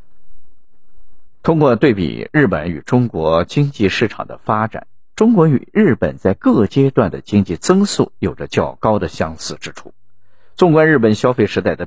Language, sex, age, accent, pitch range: Chinese, male, 50-69, native, 100-165 Hz